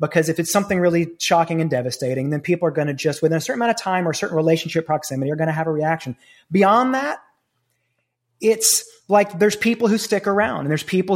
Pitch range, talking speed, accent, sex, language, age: 155-205 Hz, 230 wpm, American, male, English, 30-49